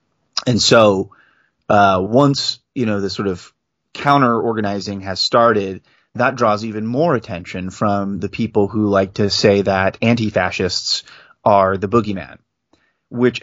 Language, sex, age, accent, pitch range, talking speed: English, male, 30-49, American, 100-115 Hz, 140 wpm